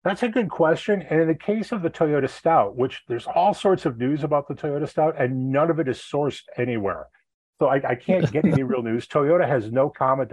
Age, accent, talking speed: 40-59, American, 240 wpm